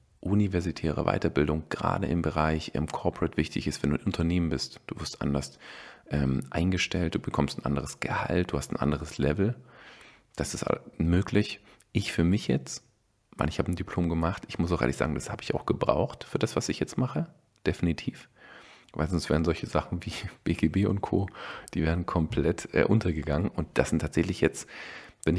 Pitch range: 75-95 Hz